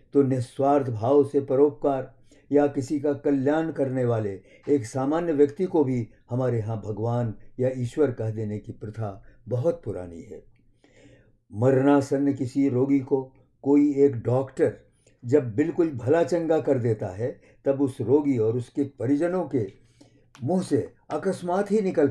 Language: Hindi